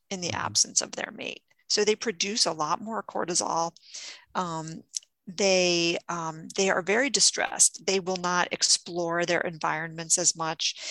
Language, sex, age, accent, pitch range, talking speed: English, female, 40-59, American, 170-215 Hz, 155 wpm